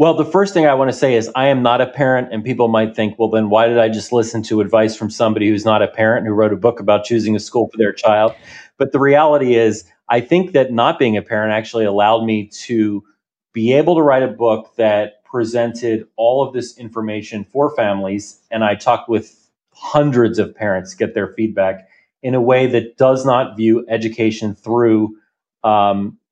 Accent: American